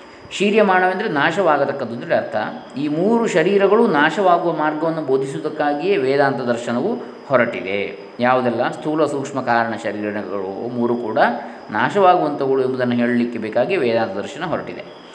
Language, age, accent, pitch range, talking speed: Kannada, 20-39, native, 120-155 Hz, 100 wpm